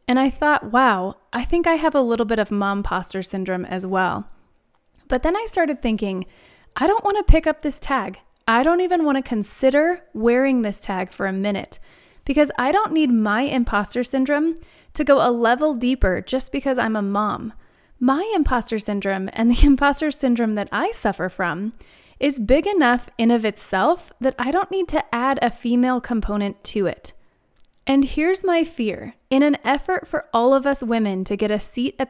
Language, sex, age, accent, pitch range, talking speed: English, female, 20-39, American, 215-285 Hz, 195 wpm